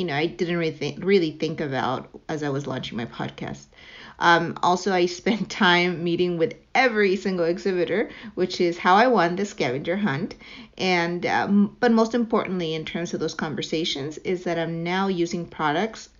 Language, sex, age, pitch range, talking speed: English, female, 50-69, 160-195 Hz, 180 wpm